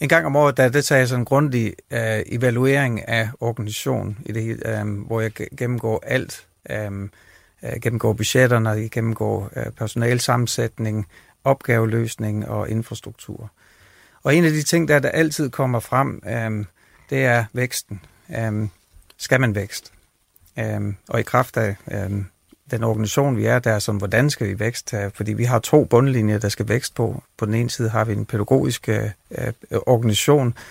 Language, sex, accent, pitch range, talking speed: Danish, male, native, 105-130 Hz, 165 wpm